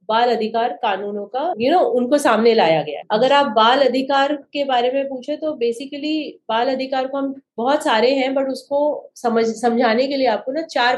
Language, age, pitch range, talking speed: Hindi, 30-49, 215-265 Hz, 210 wpm